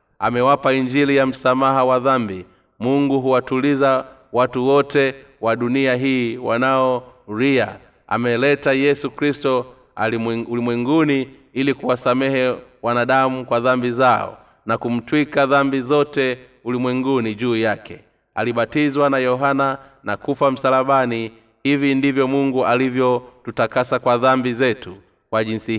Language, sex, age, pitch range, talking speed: Swahili, male, 30-49, 115-135 Hz, 110 wpm